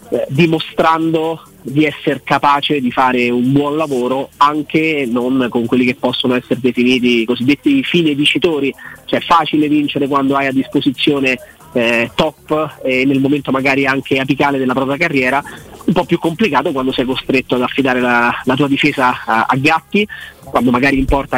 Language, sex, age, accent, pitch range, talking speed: Italian, male, 30-49, native, 125-150 Hz, 170 wpm